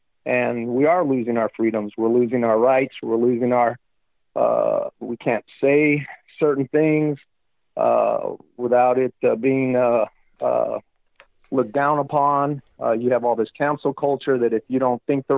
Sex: male